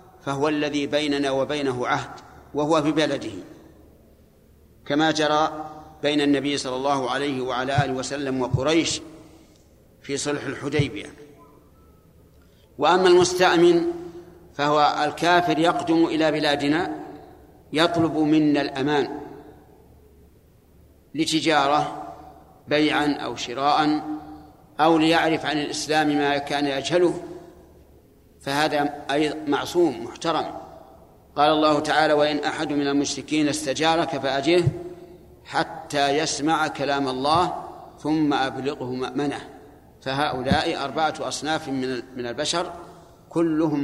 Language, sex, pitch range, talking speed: Arabic, male, 140-160 Hz, 95 wpm